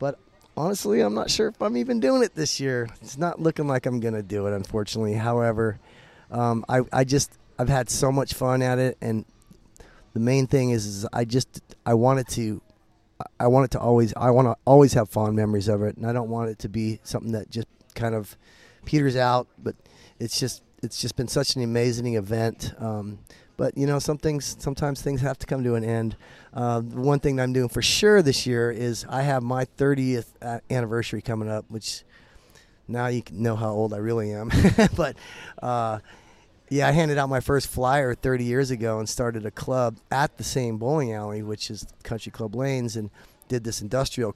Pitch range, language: 110-130 Hz, English